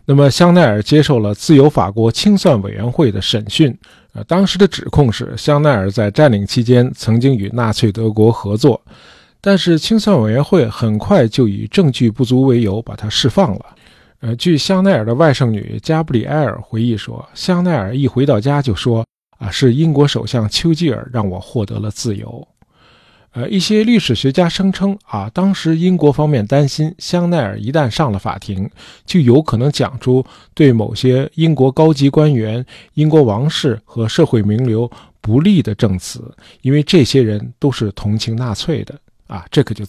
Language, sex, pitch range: Chinese, male, 115-155 Hz